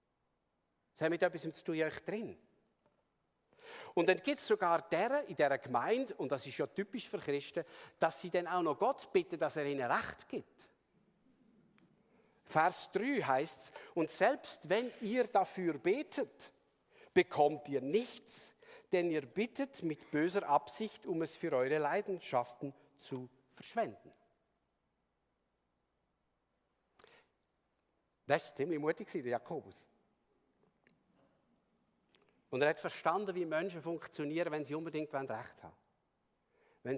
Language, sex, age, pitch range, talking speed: German, male, 50-69, 140-210 Hz, 125 wpm